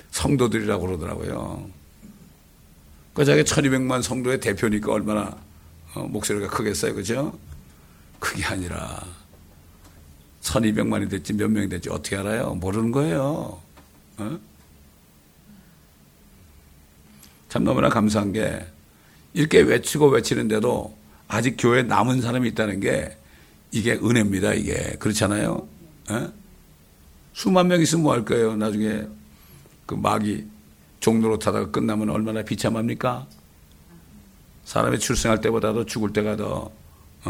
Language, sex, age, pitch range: Korean, male, 60-79, 75-110 Hz